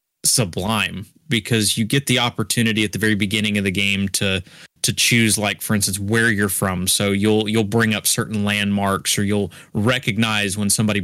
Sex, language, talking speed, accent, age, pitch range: male, English, 185 wpm, American, 20-39, 105-120 Hz